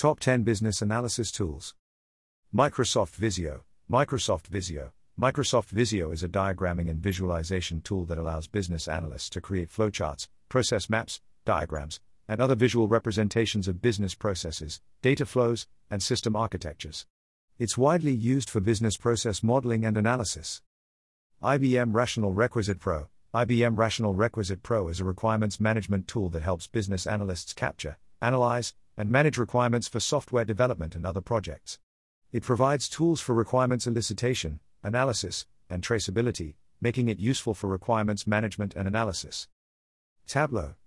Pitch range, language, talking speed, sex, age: 90-120 Hz, English, 140 wpm, male, 50-69